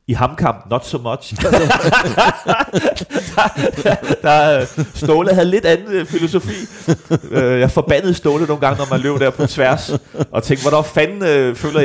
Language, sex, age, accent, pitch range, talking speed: Danish, male, 30-49, native, 105-145 Hz, 165 wpm